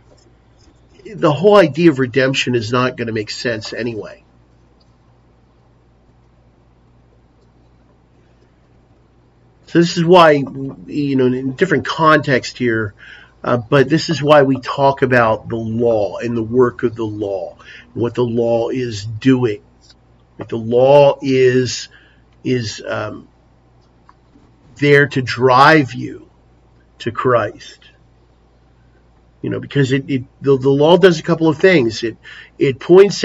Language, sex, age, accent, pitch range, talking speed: English, male, 50-69, American, 105-155 Hz, 130 wpm